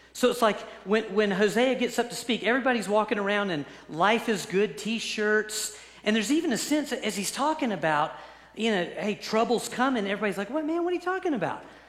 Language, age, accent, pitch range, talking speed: English, 40-59, American, 165-230 Hz, 210 wpm